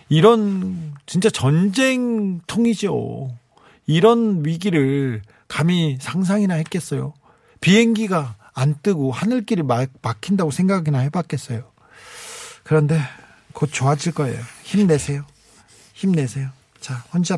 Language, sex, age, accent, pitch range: Korean, male, 40-59, native, 145-215 Hz